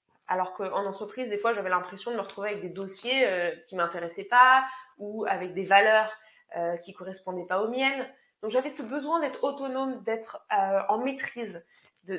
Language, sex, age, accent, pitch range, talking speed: French, female, 20-39, French, 195-270 Hz, 185 wpm